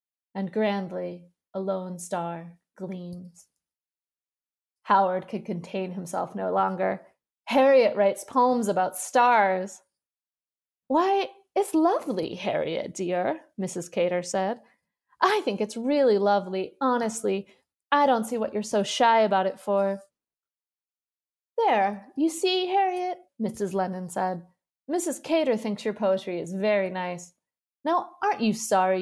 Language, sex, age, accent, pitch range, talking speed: English, female, 30-49, American, 185-245 Hz, 125 wpm